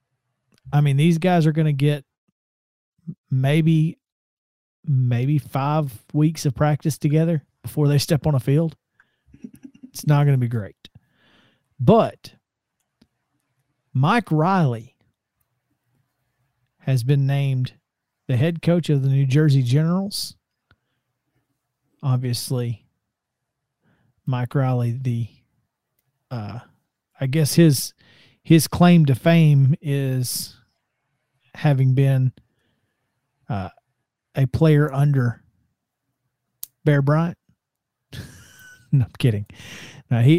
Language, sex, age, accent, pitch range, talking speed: English, male, 40-59, American, 125-150 Hz, 100 wpm